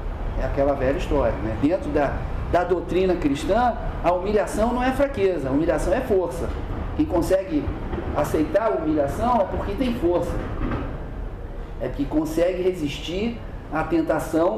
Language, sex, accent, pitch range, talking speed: Portuguese, male, Brazilian, 130-195 Hz, 135 wpm